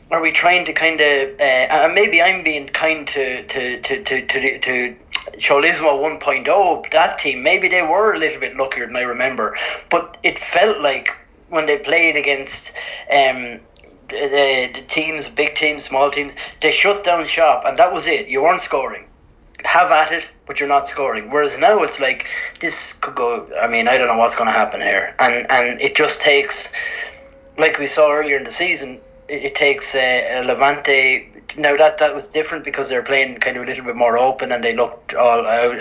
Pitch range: 130-160 Hz